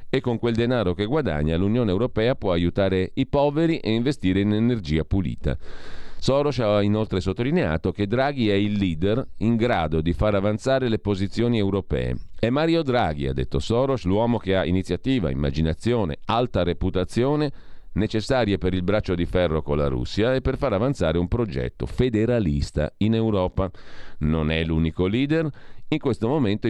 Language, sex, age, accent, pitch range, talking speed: Italian, male, 40-59, native, 80-115 Hz, 160 wpm